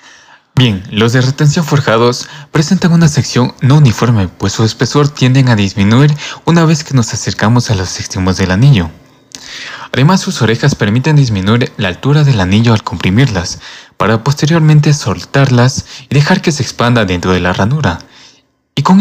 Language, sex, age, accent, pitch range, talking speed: Spanish, male, 20-39, Mexican, 110-145 Hz, 160 wpm